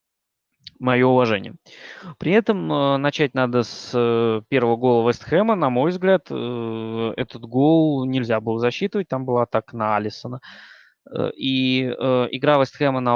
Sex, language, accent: male, Russian, native